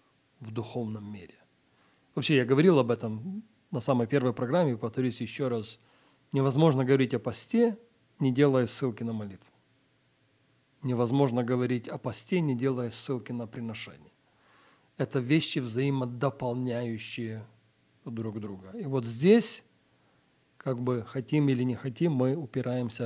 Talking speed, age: 130 wpm, 40-59